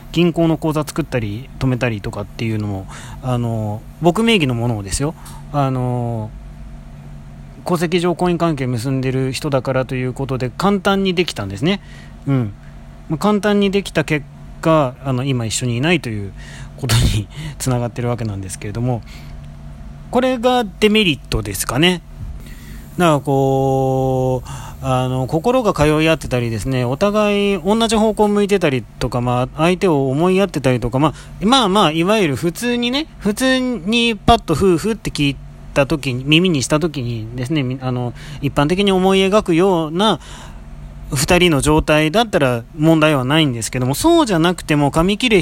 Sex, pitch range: male, 120-175 Hz